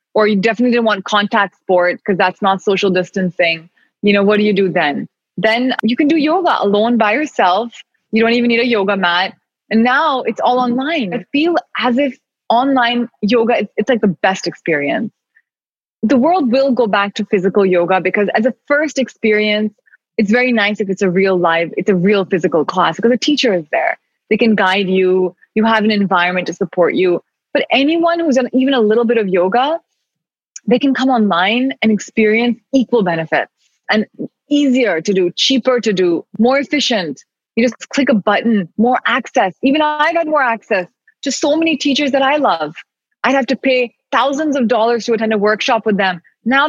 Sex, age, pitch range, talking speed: female, 20-39, 200-265 Hz, 195 wpm